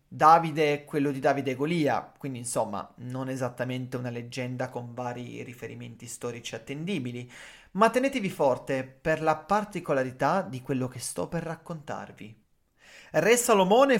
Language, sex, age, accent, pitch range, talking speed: Italian, male, 30-49, native, 130-195 Hz, 135 wpm